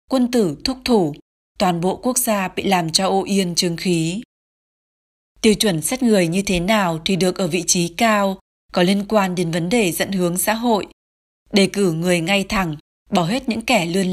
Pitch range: 180-215 Hz